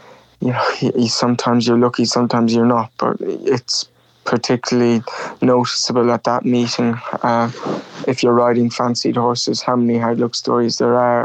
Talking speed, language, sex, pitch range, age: 155 wpm, English, male, 115-125 Hz, 20-39